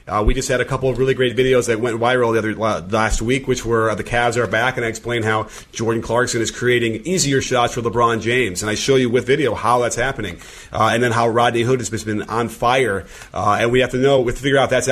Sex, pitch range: male, 110-130 Hz